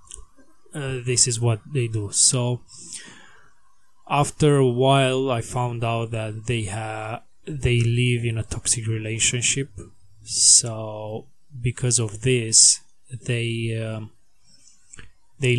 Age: 20-39